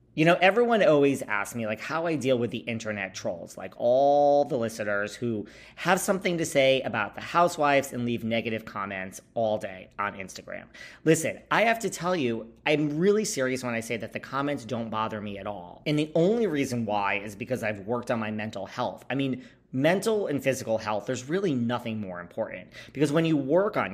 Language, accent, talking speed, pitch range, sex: English, American, 210 wpm, 110-145 Hz, male